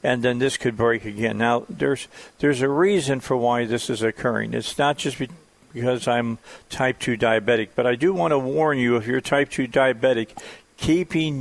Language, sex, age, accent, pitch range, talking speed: English, male, 50-69, American, 115-130 Hz, 200 wpm